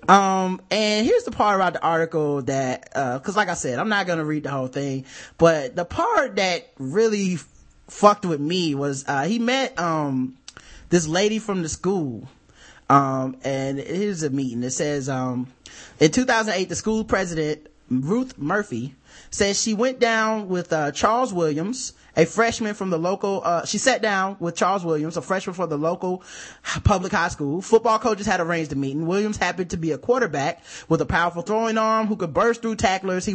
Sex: male